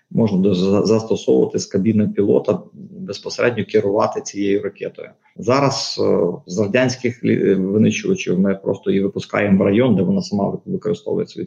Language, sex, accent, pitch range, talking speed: Ukrainian, male, native, 105-140 Hz, 130 wpm